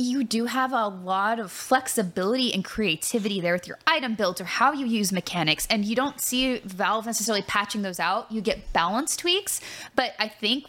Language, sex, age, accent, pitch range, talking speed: English, female, 10-29, American, 205-285 Hz, 195 wpm